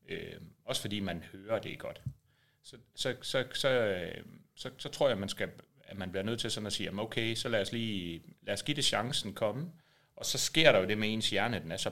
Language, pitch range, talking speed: Danish, 95-125 Hz, 245 wpm